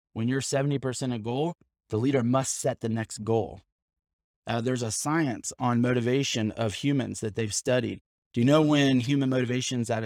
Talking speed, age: 180 wpm, 30-49